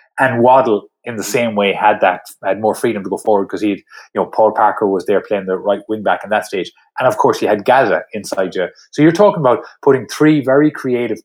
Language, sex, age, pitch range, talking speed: English, male, 30-49, 110-150 Hz, 245 wpm